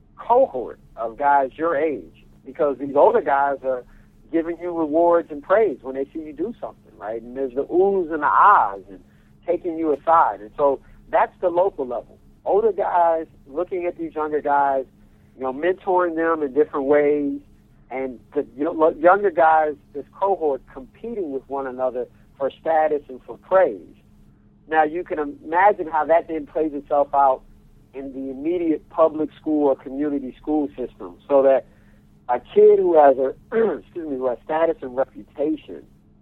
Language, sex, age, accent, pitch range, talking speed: English, male, 50-69, American, 135-165 Hz, 165 wpm